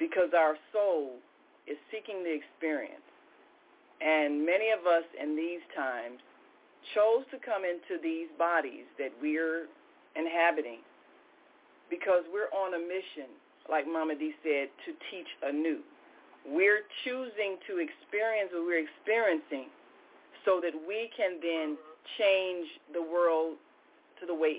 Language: English